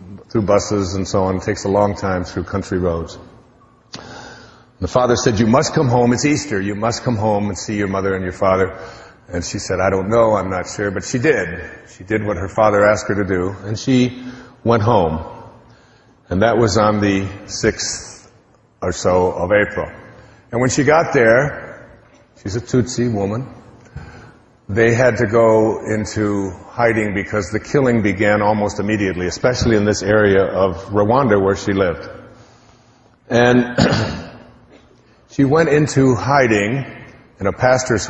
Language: English